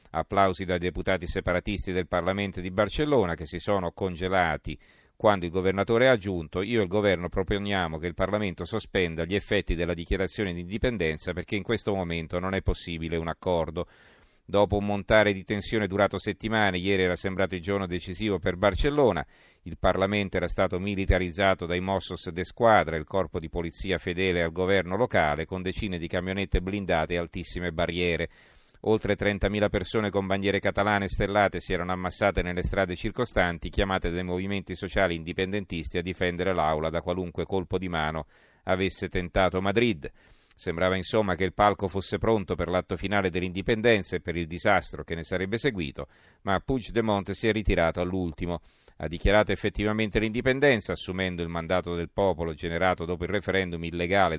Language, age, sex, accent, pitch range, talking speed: Italian, 40-59, male, native, 90-100 Hz, 165 wpm